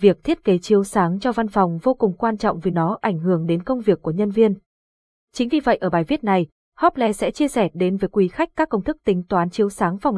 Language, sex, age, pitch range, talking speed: Vietnamese, female, 20-39, 175-225 Hz, 265 wpm